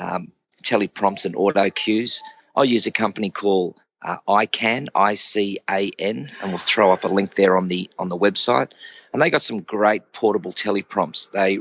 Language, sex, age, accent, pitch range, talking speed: English, male, 40-59, Australian, 95-110 Hz, 170 wpm